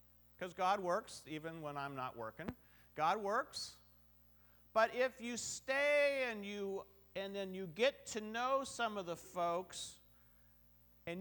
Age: 50-69